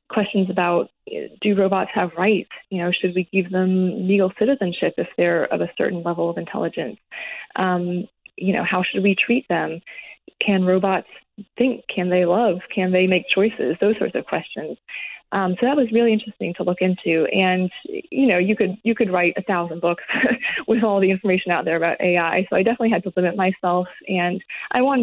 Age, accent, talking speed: 20-39, American, 195 wpm